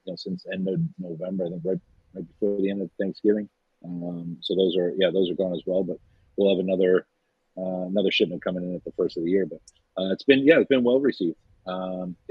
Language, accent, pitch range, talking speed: English, American, 95-120 Hz, 235 wpm